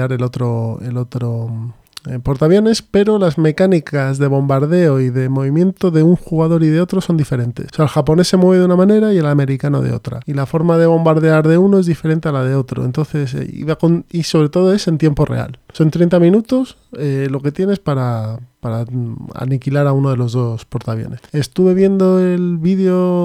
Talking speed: 200 wpm